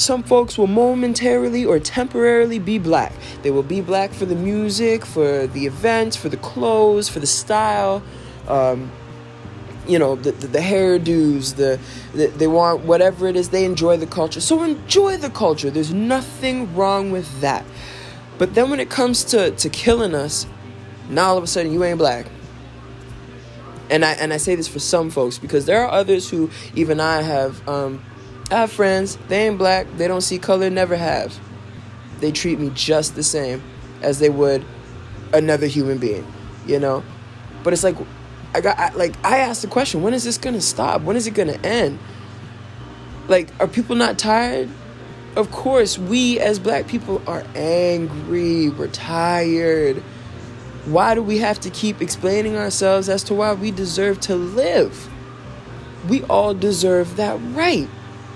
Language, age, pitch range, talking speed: English, 20-39, 130-205 Hz, 175 wpm